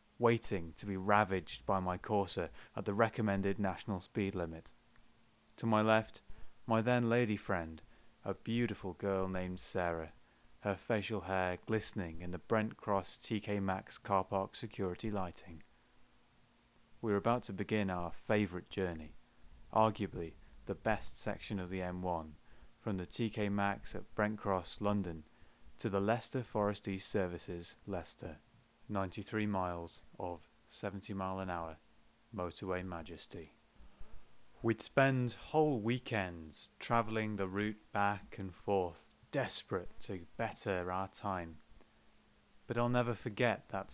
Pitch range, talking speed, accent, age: 90-115 Hz, 130 wpm, British, 30-49